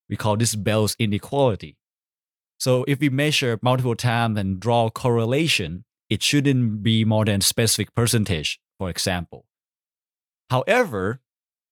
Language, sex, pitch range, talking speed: English, male, 105-135 Hz, 130 wpm